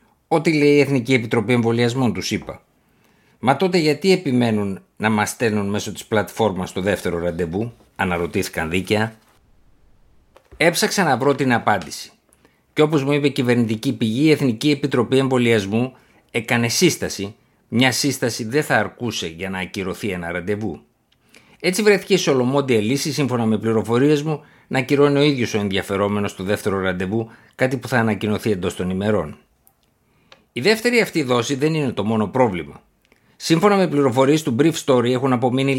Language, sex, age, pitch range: Greek, male, 50-69, 105-140 Hz